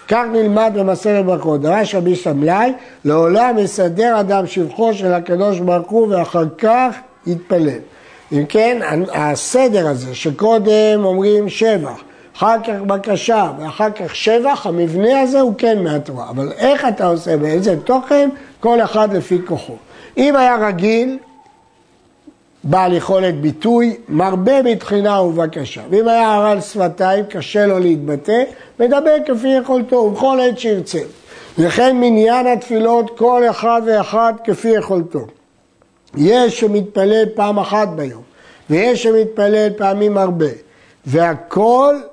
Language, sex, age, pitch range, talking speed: Hebrew, male, 60-79, 175-230 Hz, 120 wpm